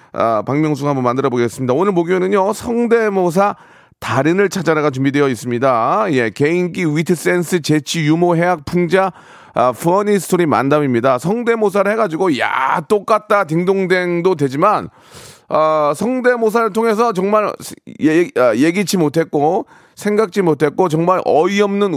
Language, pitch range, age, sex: Korean, 145-200 Hz, 30-49, male